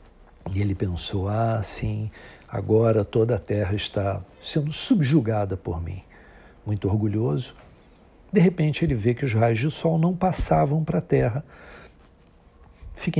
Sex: male